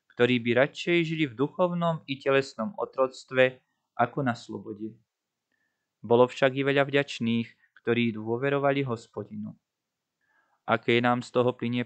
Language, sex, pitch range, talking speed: Slovak, male, 120-140 Hz, 125 wpm